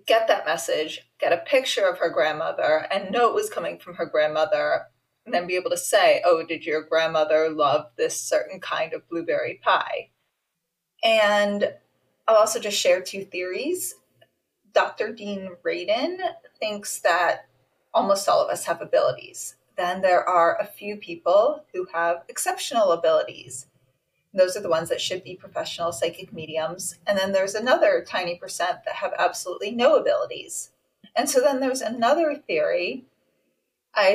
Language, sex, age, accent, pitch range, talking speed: English, female, 30-49, American, 180-295 Hz, 155 wpm